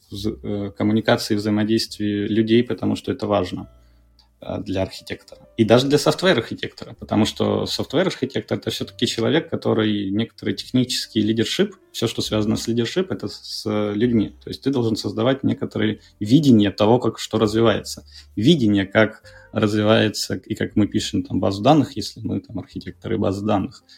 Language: Russian